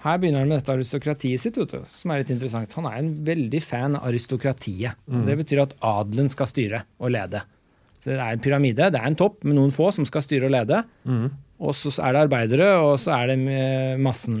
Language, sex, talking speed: English, male, 250 wpm